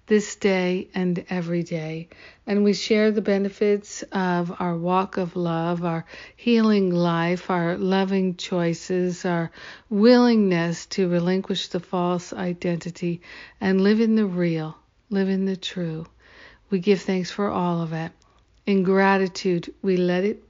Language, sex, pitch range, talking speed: English, female, 175-205 Hz, 145 wpm